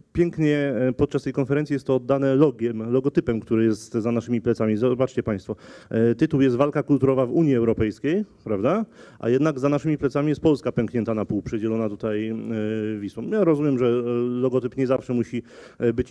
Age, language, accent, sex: 30-49, Polish, native, male